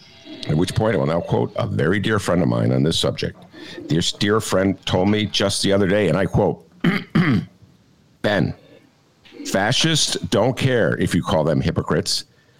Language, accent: English, American